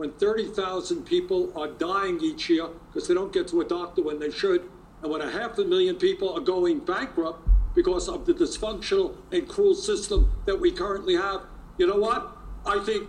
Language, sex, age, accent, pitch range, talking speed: English, male, 60-79, American, 240-390 Hz, 195 wpm